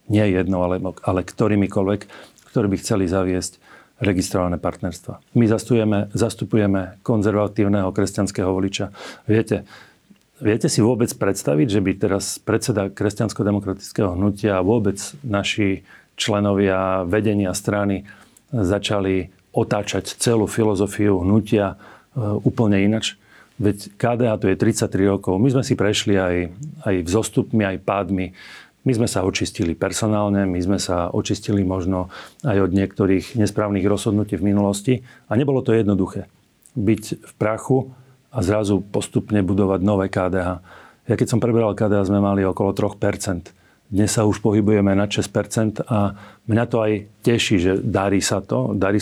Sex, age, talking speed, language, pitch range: male, 40-59, 135 wpm, Slovak, 95-110 Hz